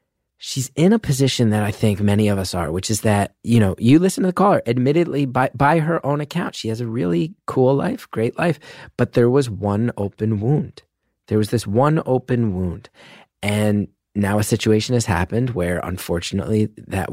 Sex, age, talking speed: male, 30-49, 195 wpm